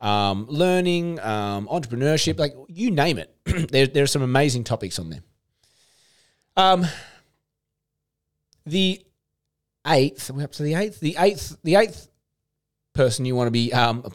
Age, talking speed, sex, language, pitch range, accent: 30-49, 145 wpm, male, English, 105-140 Hz, Australian